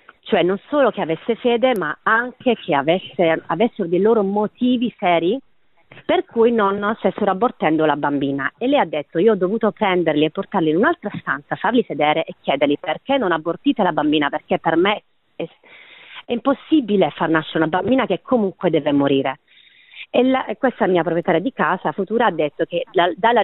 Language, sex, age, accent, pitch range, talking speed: Italian, female, 40-59, native, 160-225 Hz, 175 wpm